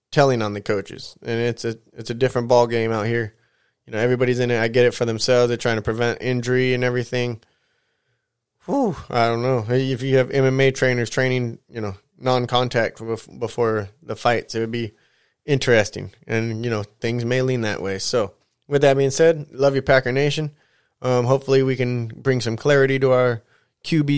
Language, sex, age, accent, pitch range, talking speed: English, male, 20-39, American, 120-145 Hz, 195 wpm